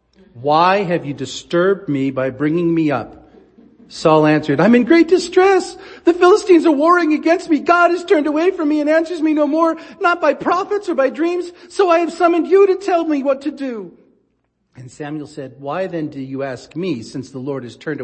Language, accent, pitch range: English, American, 135-205 Hz